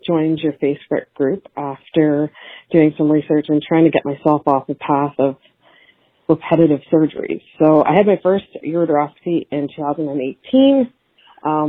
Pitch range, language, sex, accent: 150-185 Hz, English, female, American